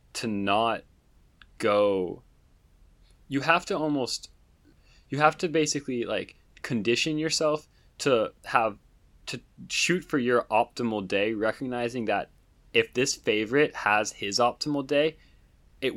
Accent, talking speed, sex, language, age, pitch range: American, 120 wpm, male, English, 20-39, 100-135 Hz